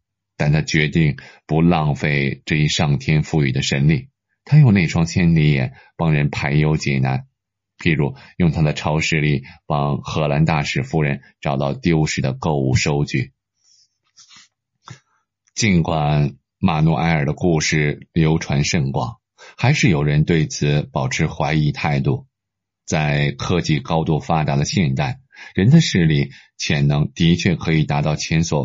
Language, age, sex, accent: Chinese, 20-39, male, native